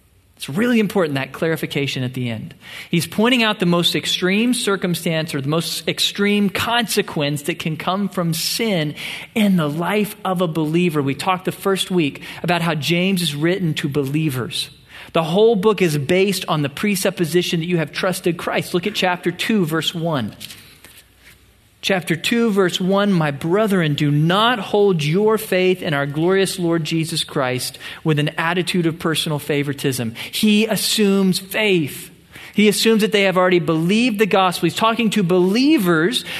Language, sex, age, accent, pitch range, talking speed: English, male, 40-59, American, 160-220 Hz, 165 wpm